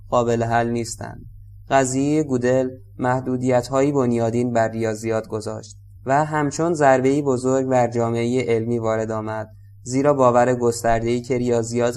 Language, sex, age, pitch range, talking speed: Persian, male, 20-39, 110-130 Hz, 120 wpm